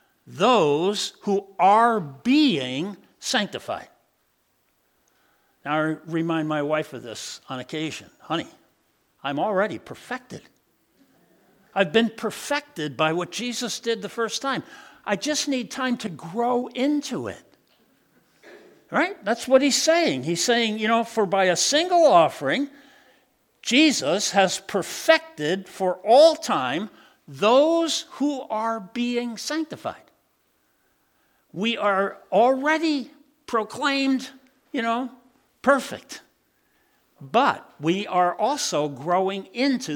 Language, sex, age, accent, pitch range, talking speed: English, male, 60-79, American, 180-260 Hz, 110 wpm